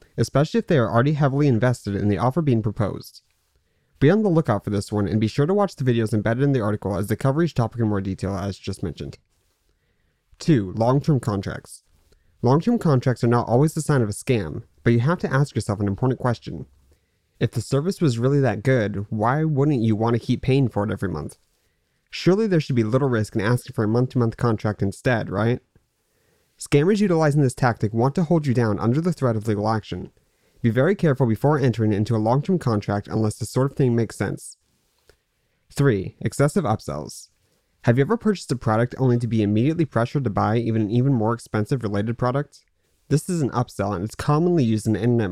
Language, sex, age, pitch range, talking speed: English, male, 20-39, 105-140 Hz, 210 wpm